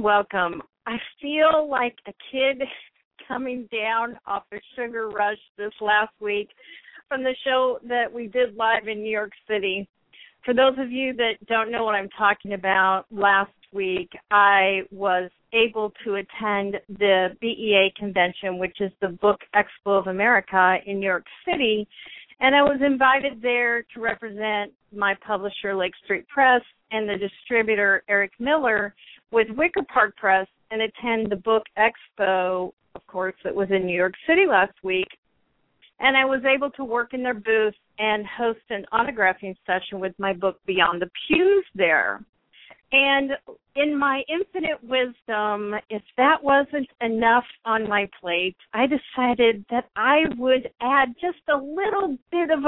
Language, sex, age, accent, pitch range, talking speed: English, female, 50-69, American, 200-265 Hz, 155 wpm